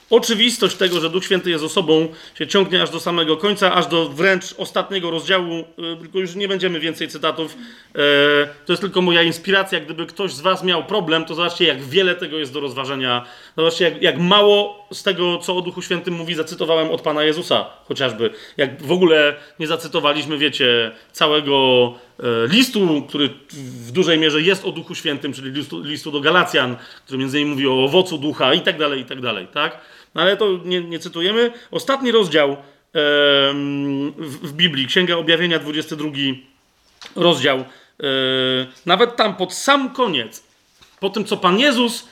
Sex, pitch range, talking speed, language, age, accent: male, 145-195 Hz, 165 wpm, Polish, 30-49, native